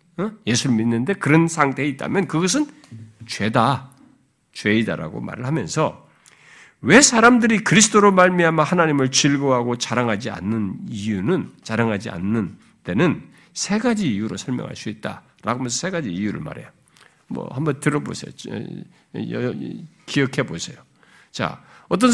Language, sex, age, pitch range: Korean, male, 50-69, 115-190 Hz